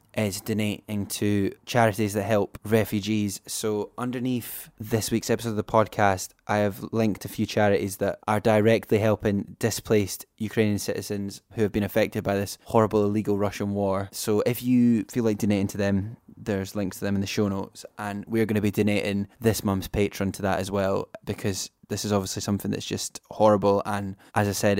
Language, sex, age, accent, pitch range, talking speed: English, male, 10-29, British, 100-110 Hz, 190 wpm